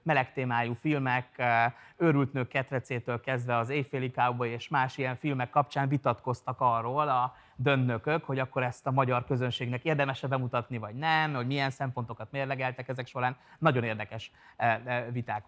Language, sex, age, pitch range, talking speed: Hungarian, male, 30-49, 120-145 Hz, 145 wpm